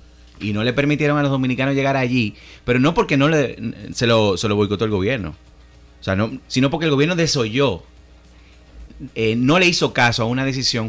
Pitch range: 95-140 Hz